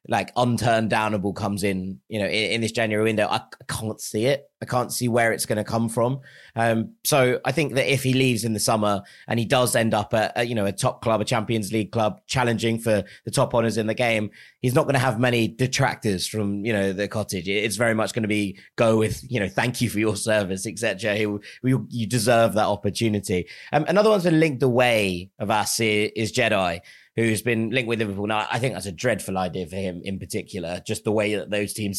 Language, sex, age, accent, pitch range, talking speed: English, male, 20-39, British, 105-120 Hz, 245 wpm